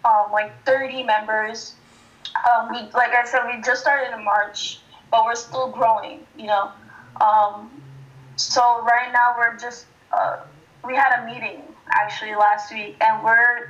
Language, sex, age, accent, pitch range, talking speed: English, female, 10-29, American, 210-240 Hz, 160 wpm